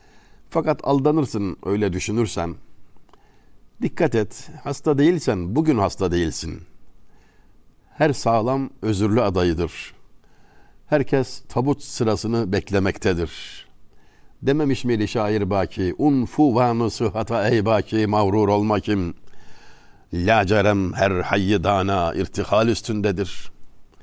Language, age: Turkish, 60-79